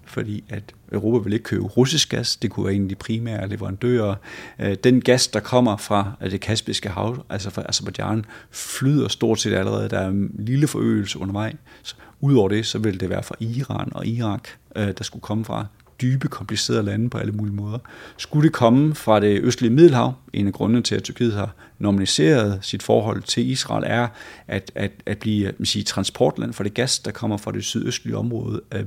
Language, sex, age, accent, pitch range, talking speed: Danish, male, 30-49, native, 105-125 Hz, 195 wpm